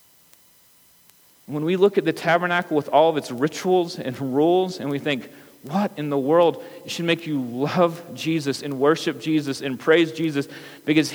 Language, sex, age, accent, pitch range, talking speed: English, male, 40-59, American, 140-180 Hz, 170 wpm